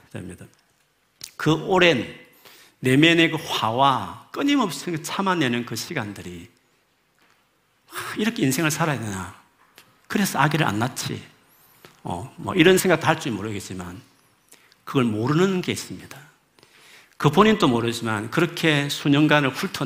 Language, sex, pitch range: Korean, male, 105-140 Hz